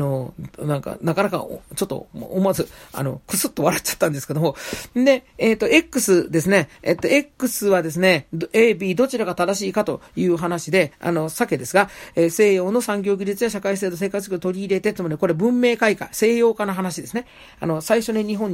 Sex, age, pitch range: male, 40-59, 165-230 Hz